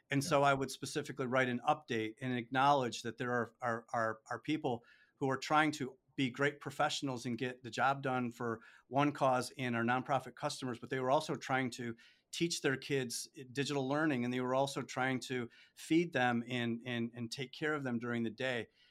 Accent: American